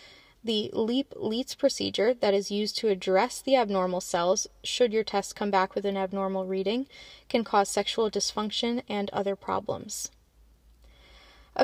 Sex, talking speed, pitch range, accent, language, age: female, 150 wpm, 205-235 Hz, American, English, 10-29